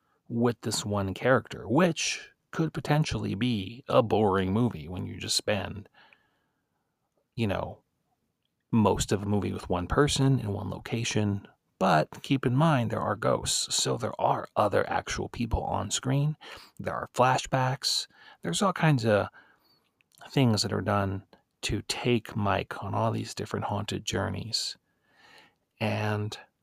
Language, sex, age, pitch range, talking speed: English, male, 40-59, 105-135 Hz, 140 wpm